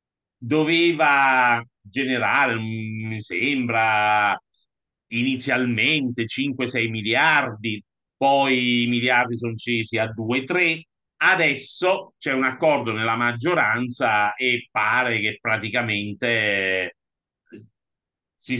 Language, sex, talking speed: Italian, male, 80 wpm